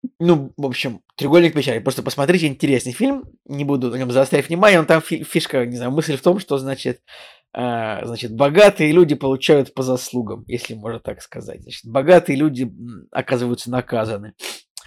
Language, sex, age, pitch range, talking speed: Russian, male, 20-39, 125-155 Hz, 160 wpm